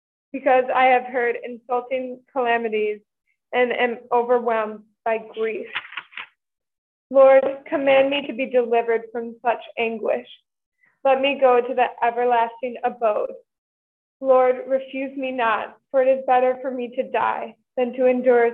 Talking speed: 135 wpm